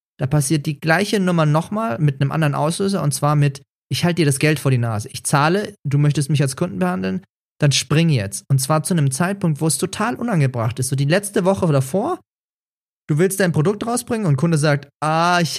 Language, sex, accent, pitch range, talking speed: German, male, German, 135-170 Hz, 220 wpm